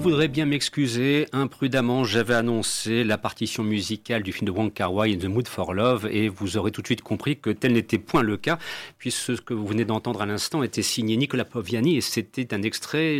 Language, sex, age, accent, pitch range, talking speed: French, male, 40-59, French, 110-135 Hz, 215 wpm